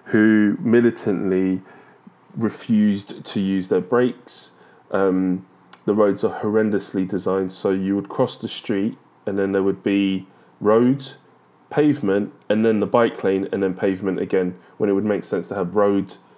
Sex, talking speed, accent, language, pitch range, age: male, 160 wpm, British, English, 95-110 Hz, 20-39